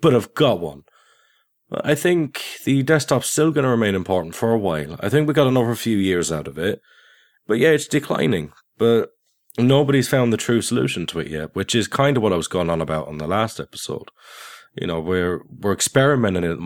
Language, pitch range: English, 90-120 Hz